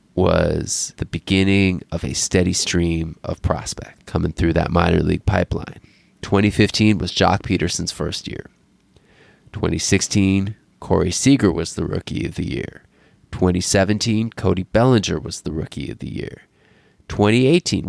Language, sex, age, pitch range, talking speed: English, male, 20-39, 90-110 Hz, 135 wpm